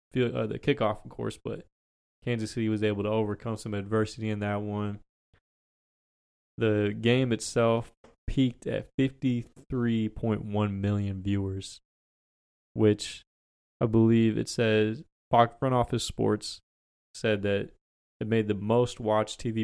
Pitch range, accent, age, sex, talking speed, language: 95-115 Hz, American, 20-39, male, 130 wpm, English